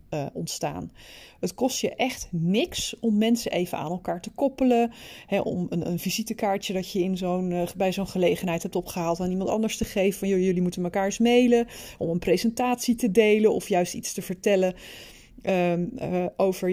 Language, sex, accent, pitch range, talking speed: Dutch, female, Dutch, 180-230 Hz, 190 wpm